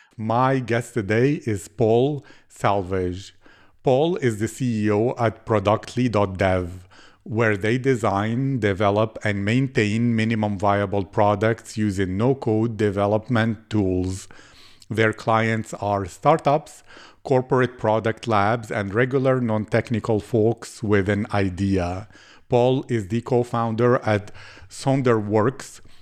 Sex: male